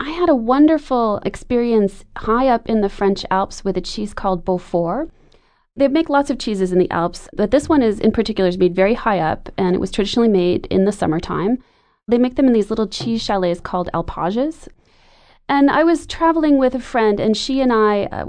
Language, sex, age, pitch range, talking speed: English, female, 30-49, 185-235 Hz, 215 wpm